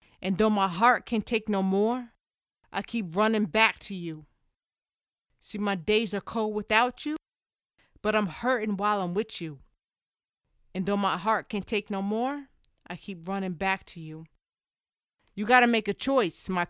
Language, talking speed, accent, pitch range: English, 175 wpm, American, 185-230 Hz